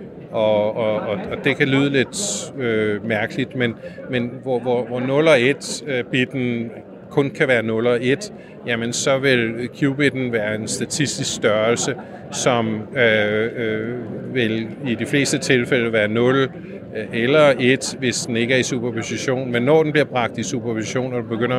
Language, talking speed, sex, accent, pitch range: Danish, 170 wpm, male, native, 115-135 Hz